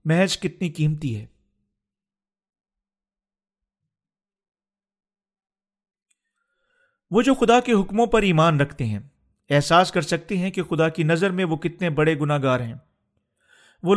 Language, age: Urdu, 40-59